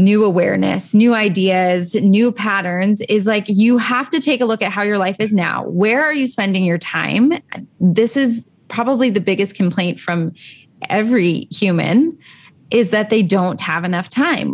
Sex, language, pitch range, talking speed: female, English, 180-225 Hz, 175 wpm